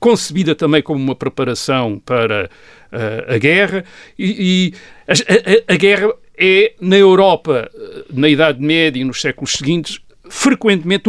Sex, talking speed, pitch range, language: male, 140 wpm, 135-190 Hz, Portuguese